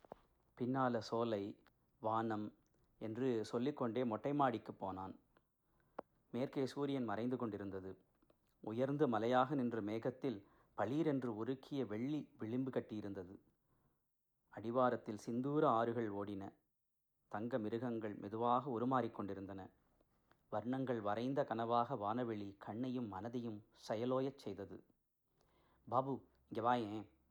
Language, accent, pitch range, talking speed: Tamil, native, 110-125 Hz, 85 wpm